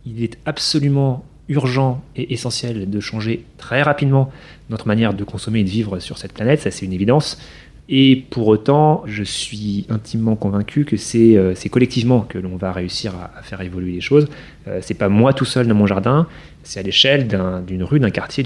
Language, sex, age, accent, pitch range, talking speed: French, male, 30-49, French, 100-135 Hz, 195 wpm